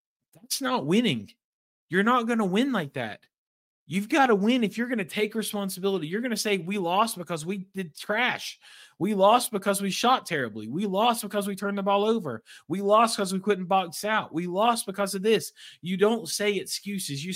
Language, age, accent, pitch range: English, 20-39, American, 145-200 Hz